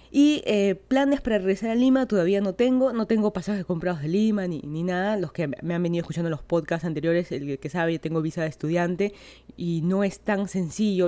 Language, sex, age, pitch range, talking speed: Spanish, female, 20-39, 170-210 Hz, 220 wpm